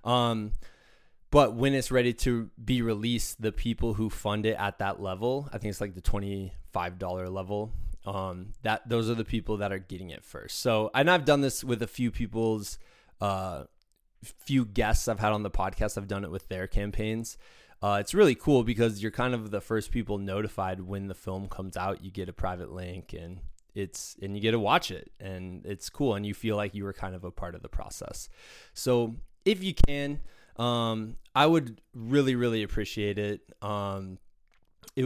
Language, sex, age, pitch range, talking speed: English, male, 20-39, 95-115 Hz, 200 wpm